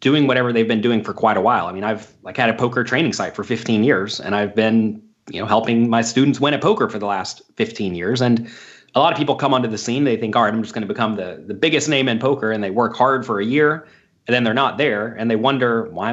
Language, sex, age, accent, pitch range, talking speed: English, male, 30-49, American, 120-145 Hz, 285 wpm